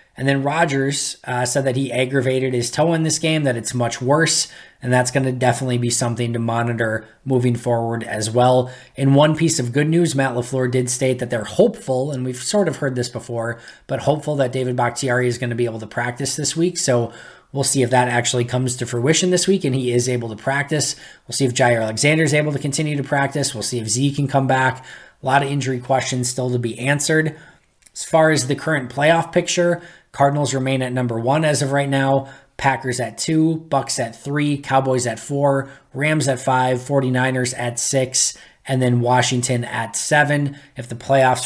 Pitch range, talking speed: 125-145 Hz, 215 wpm